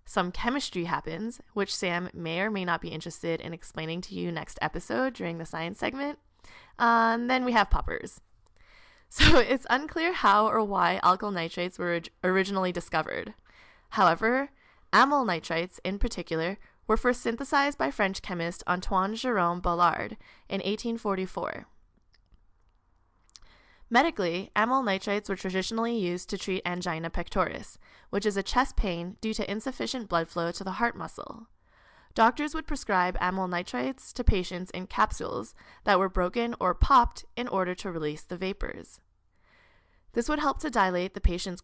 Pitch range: 170-230 Hz